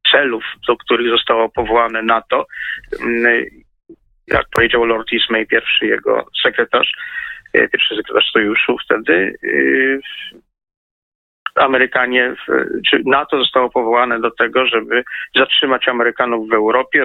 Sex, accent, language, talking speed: male, native, Polish, 105 wpm